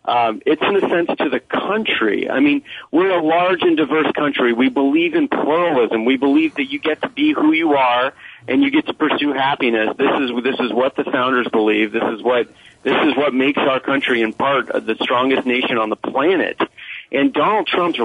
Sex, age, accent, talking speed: male, 40-59, American, 215 wpm